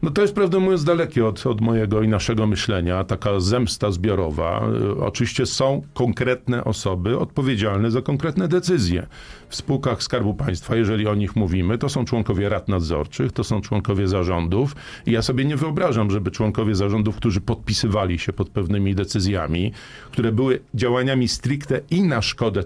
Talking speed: 160 wpm